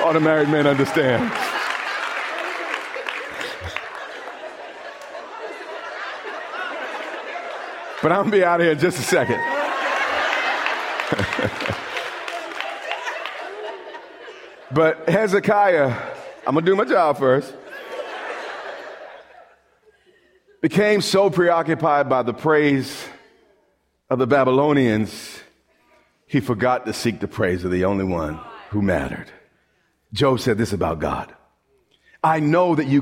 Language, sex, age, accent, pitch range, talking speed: English, male, 40-59, American, 130-190 Hz, 100 wpm